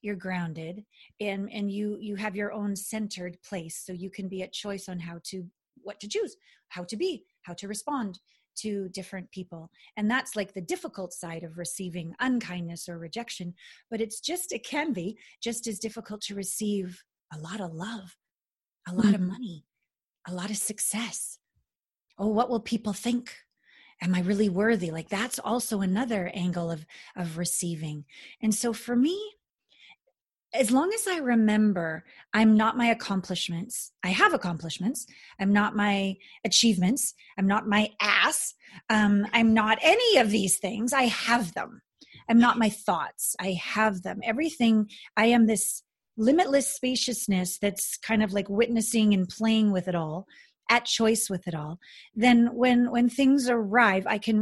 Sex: female